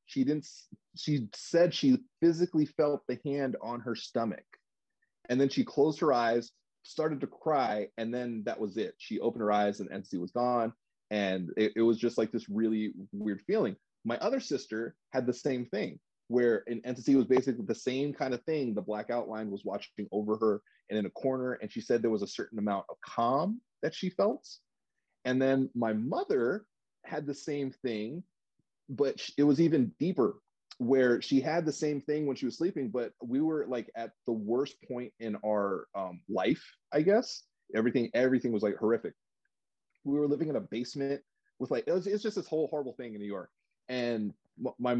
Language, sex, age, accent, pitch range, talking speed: English, male, 30-49, American, 110-145 Hz, 195 wpm